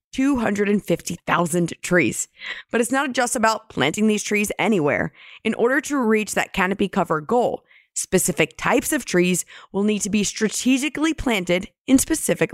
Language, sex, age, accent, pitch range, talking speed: English, female, 20-39, American, 175-235 Hz, 150 wpm